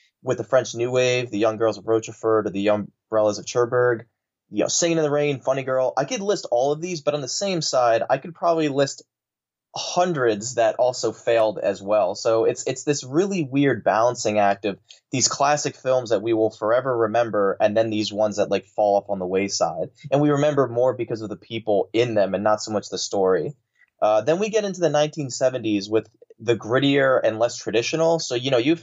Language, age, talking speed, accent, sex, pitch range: English, 20-39, 225 wpm, American, male, 105-140 Hz